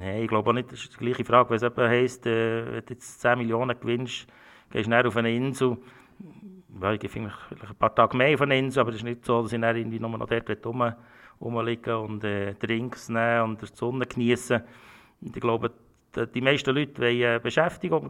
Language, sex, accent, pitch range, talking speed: German, male, Austrian, 115-130 Hz, 195 wpm